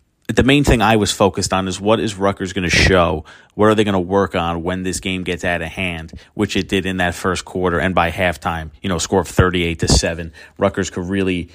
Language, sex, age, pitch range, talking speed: English, male, 30-49, 90-100 Hz, 250 wpm